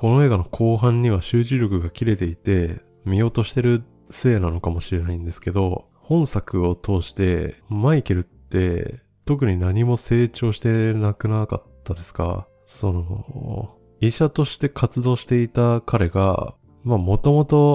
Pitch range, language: 90-120 Hz, Japanese